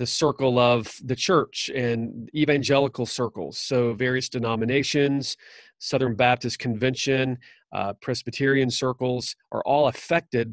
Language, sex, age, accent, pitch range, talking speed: English, male, 40-59, American, 115-135 Hz, 115 wpm